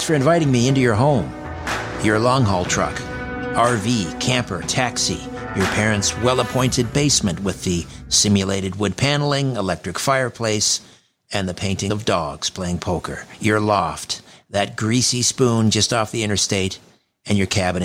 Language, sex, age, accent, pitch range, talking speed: English, male, 50-69, American, 95-120 Hz, 140 wpm